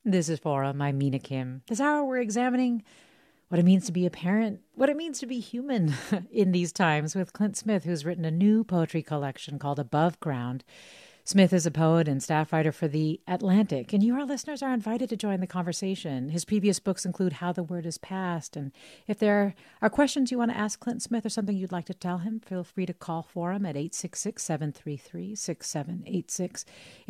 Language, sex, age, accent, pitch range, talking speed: English, female, 40-59, American, 155-200 Hz, 210 wpm